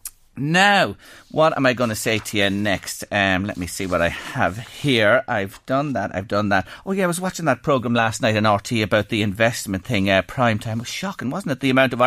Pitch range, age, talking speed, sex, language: 120-190 Hz, 40-59, 245 wpm, male, English